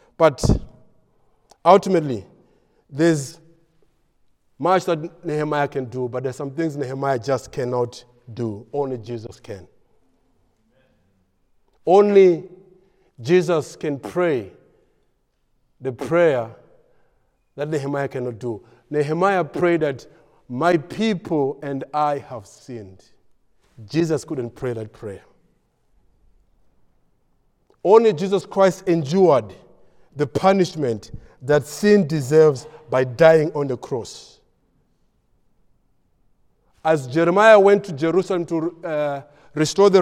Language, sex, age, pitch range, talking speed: English, male, 50-69, 125-175 Hz, 100 wpm